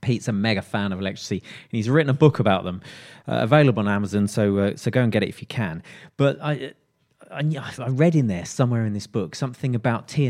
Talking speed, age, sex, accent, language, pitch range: 240 wpm, 30-49, male, British, English, 105-140 Hz